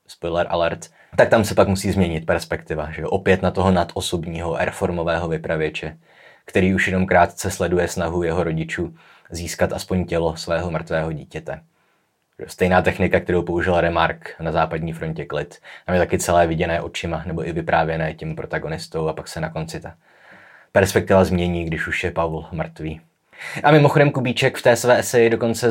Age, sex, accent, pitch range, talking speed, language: 20-39, male, native, 85-100 Hz, 165 wpm, Czech